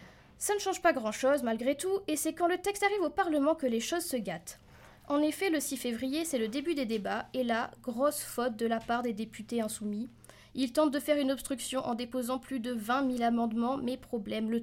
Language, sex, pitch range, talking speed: French, female, 235-295 Hz, 230 wpm